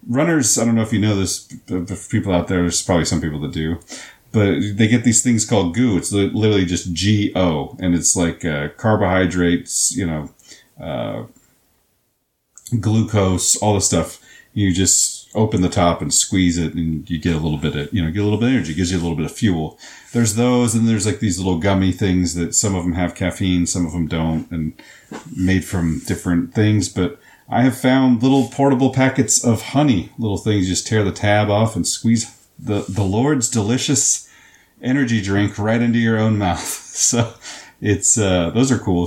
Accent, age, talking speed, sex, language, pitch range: American, 40-59, 200 wpm, male, English, 90-125 Hz